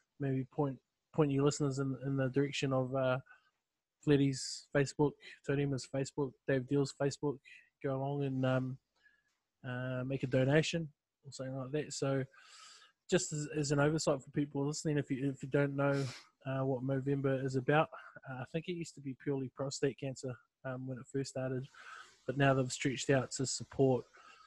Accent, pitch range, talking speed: Australian, 130-145 Hz, 175 wpm